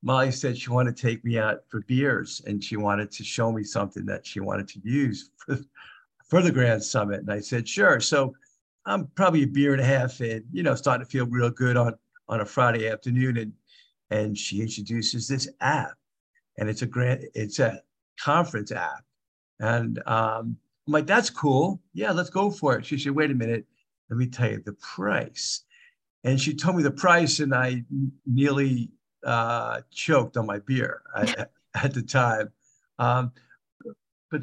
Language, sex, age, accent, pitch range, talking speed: English, male, 50-69, American, 110-140 Hz, 190 wpm